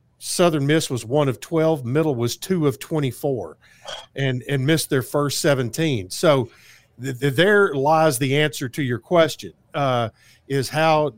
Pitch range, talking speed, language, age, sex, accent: 125-150 Hz, 160 wpm, English, 50-69, male, American